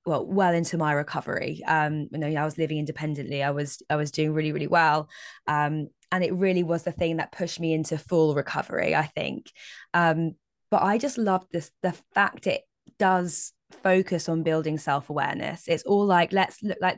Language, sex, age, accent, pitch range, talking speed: English, female, 20-39, British, 150-185 Hz, 190 wpm